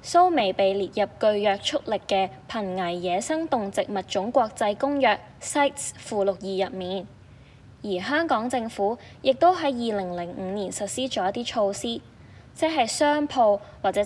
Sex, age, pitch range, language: female, 10-29, 190-265 Hz, Chinese